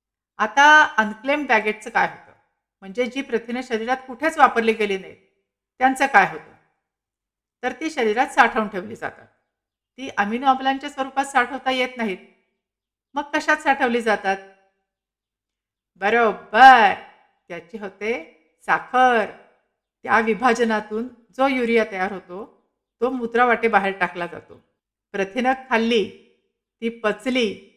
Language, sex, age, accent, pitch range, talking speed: Marathi, female, 50-69, native, 210-265 Hz, 110 wpm